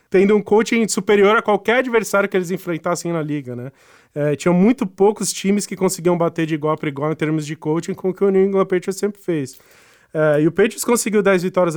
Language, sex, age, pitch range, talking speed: Portuguese, male, 20-39, 165-200 Hz, 230 wpm